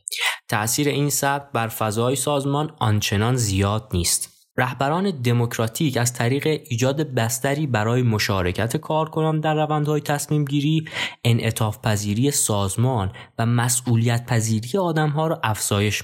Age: 20-39